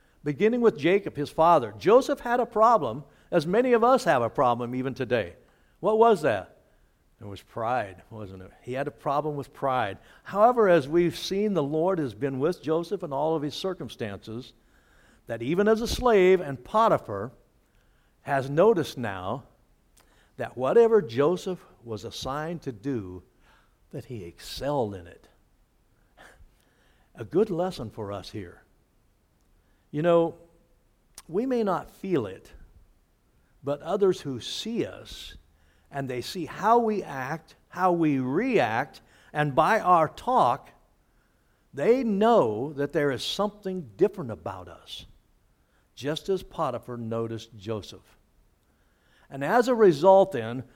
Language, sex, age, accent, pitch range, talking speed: English, male, 60-79, American, 120-190 Hz, 140 wpm